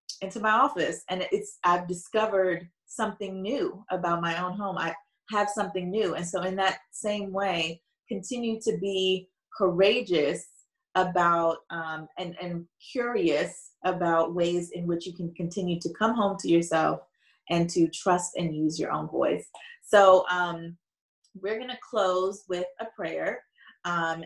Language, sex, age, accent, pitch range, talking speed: English, female, 30-49, American, 175-200 Hz, 155 wpm